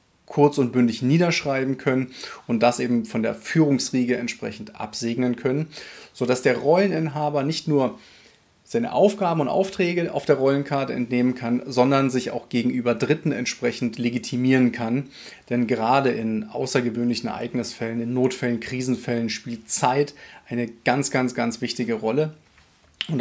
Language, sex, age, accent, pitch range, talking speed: German, male, 30-49, German, 120-140 Hz, 135 wpm